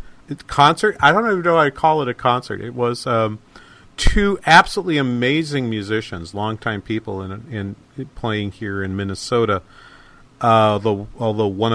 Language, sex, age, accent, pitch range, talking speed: English, male, 40-59, American, 110-145 Hz, 150 wpm